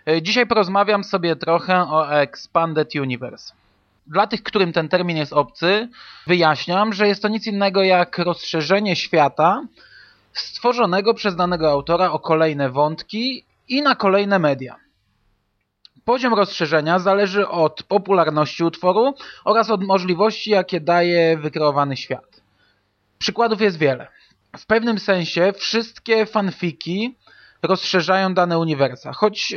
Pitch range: 150-200 Hz